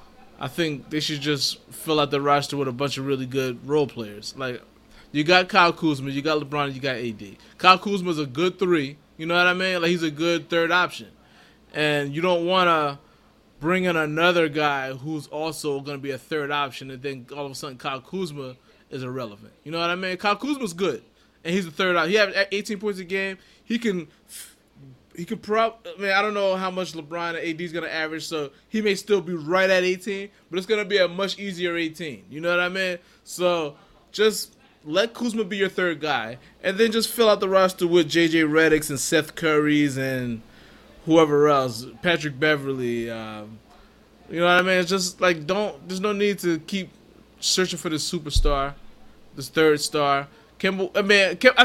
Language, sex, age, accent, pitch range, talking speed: English, male, 20-39, American, 145-190 Hz, 210 wpm